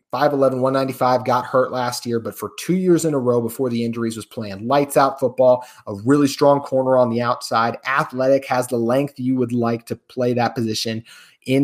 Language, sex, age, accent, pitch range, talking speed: English, male, 30-49, American, 105-130 Hz, 205 wpm